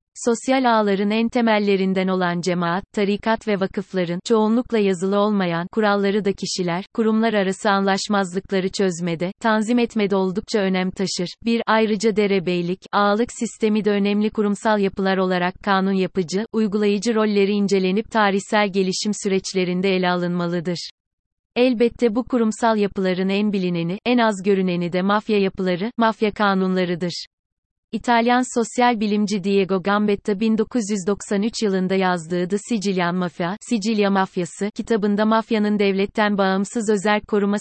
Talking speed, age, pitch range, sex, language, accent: 125 wpm, 30-49, 190-220 Hz, female, Turkish, native